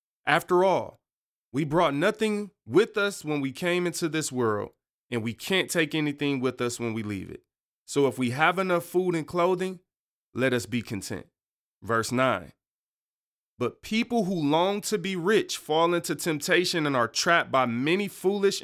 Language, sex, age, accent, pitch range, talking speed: English, male, 30-49, American, 125-175 Hz, 175 wpm